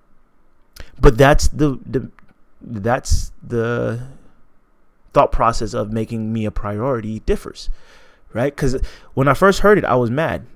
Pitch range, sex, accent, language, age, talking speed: 115-155 Hz, male, American, English, 30-49, 135 wpm